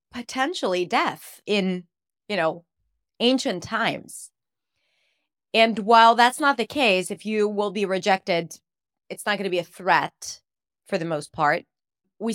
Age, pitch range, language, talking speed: 30-49, 190-265 Hz, English, 145 wpm